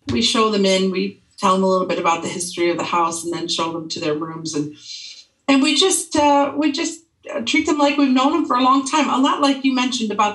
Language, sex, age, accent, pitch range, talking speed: English, female, 40-59, American, 175-220 Hz, 265 wpm